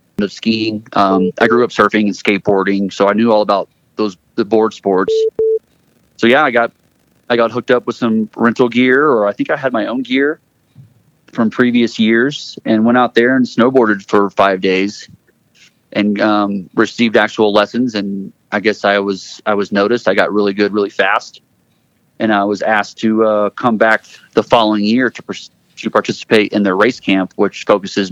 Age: 30-49